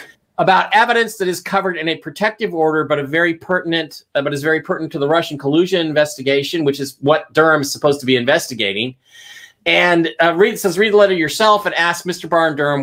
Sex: male